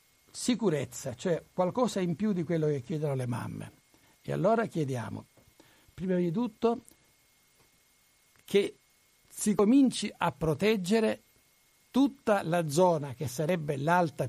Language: Italian